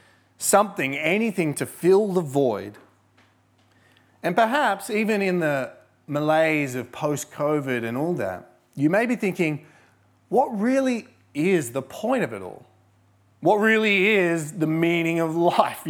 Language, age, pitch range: English, 30-49, 115-165 Hz